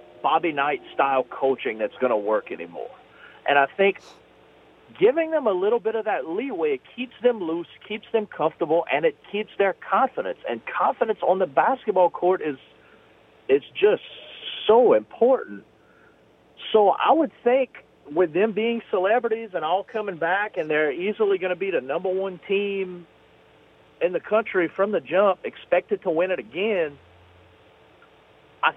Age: 40-59